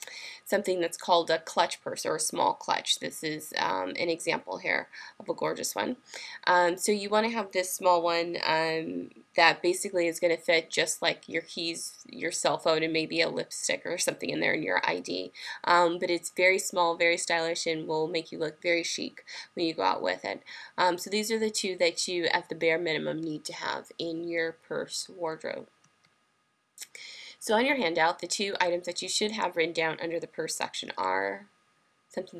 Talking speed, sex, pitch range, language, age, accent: 205 wpm, female, 165-185 Hz, English, 20-39, American